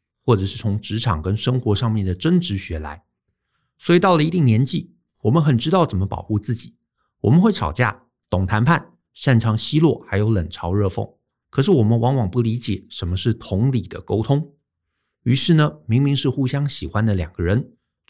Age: 50-69